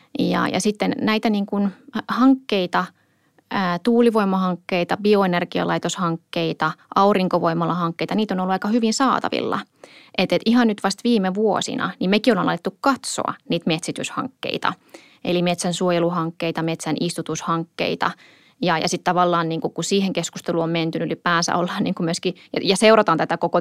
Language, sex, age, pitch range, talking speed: Finnish, female, 20-39, 170-200 Hz, 145 wpm